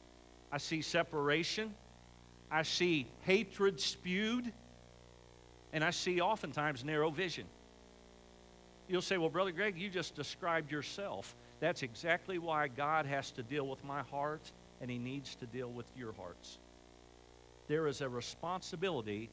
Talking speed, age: 135 wpm, 50-69